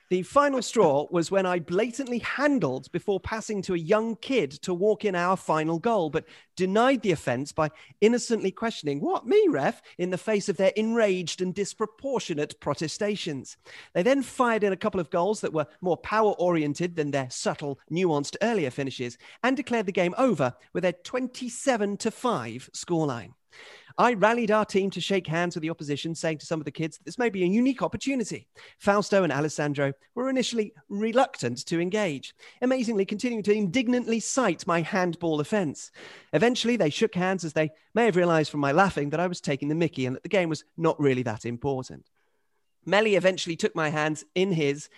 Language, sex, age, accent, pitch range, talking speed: English, male, 40-59, British, 155-220 Hz, 190 wpm